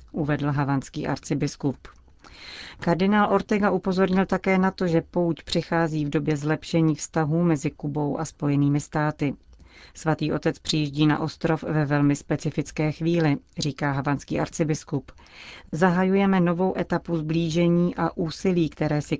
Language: Czech